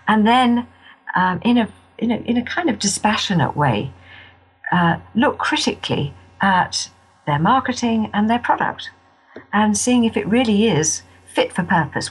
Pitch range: 140-200 Hz